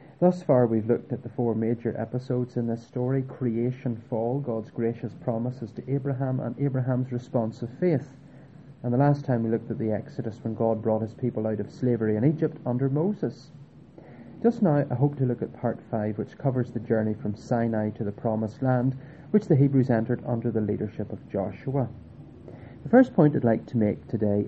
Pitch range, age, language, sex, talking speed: 115-160 Hz, 30-49, English, male, 200 wpm